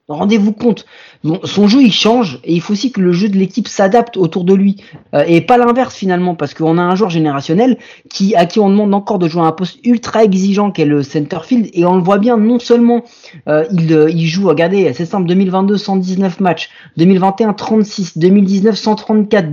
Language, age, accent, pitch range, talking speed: French, 30-49, French, 155-210 Hz, 215 wpm